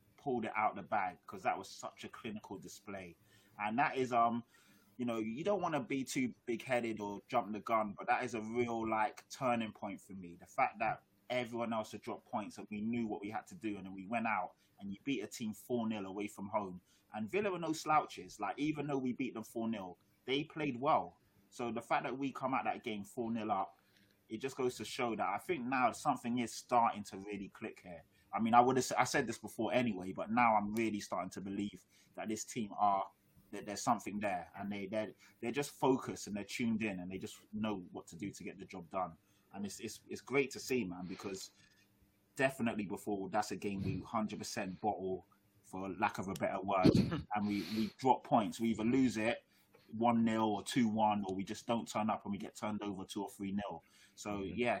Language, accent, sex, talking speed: English, British, male, 235 wpm